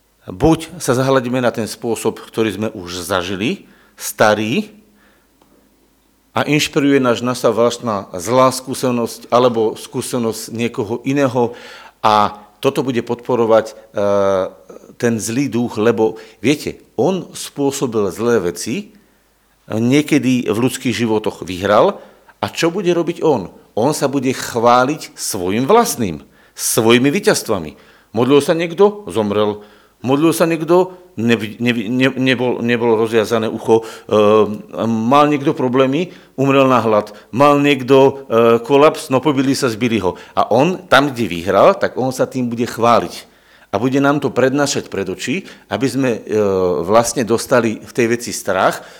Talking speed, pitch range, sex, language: 135 wpm, 110-140 Hz, male, Slovak